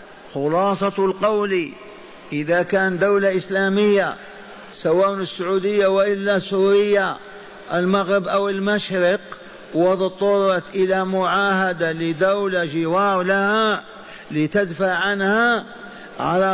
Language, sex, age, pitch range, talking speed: Arabic, male, 50-69, 170-205 Hz, 75 wpm